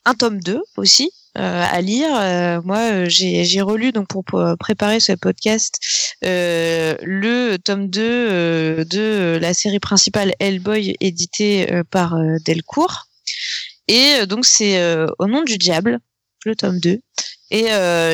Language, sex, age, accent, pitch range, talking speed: French, female, 20-39, French, 180-215 Hz, 140 wpm